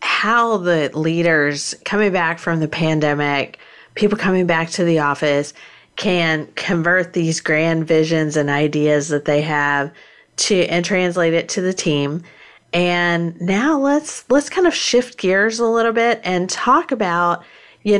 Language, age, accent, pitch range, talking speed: English, 40-59, American, 155-185 Hz, 155 wpm